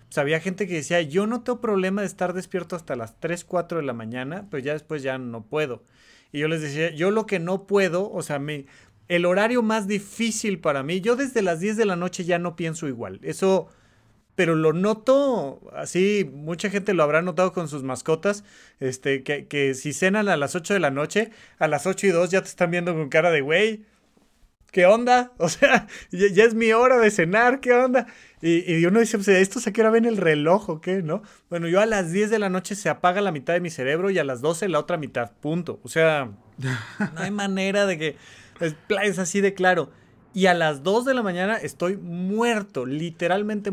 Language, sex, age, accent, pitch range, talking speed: Spanish, male, 30-49, Mexican, 150-205 Hz, 230 wpm